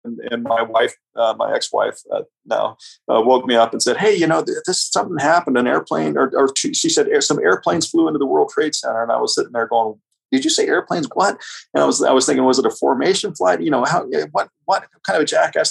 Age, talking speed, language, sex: 40-59, 250 wpm, English, male